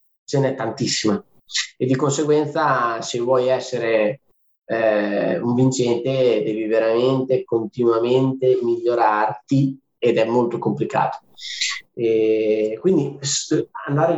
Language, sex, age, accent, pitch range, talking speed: Italian, male, 20-39, native, 120-145 Hz, 95 wpm